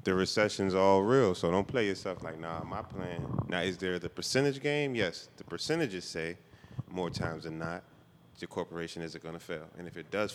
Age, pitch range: 20-39, 85-95 Hz